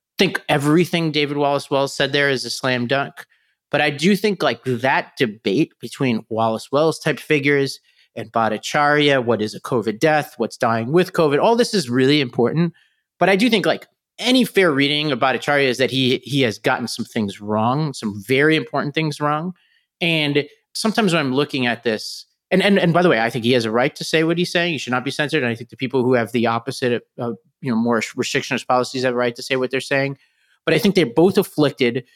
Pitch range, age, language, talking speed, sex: 125-165 Hz, 30-49, English, 230 wpm, male